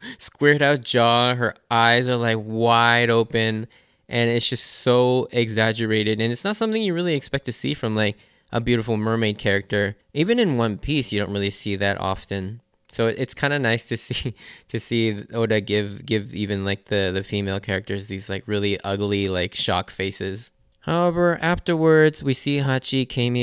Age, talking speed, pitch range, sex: 20-39, 180 wpm, 105-125 Hz, male